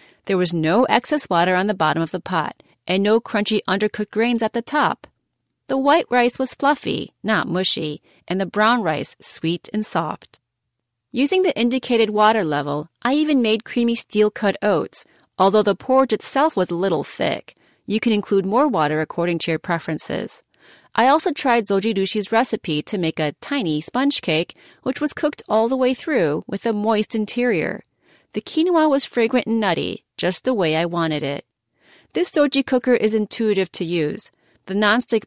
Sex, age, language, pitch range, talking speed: female, 30-49, English, 170-235 Hz, 175 wpm